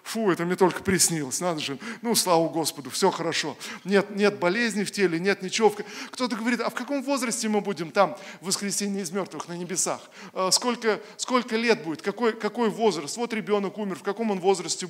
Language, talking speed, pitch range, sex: Russian, 195 wpm, 175-215 Hz, male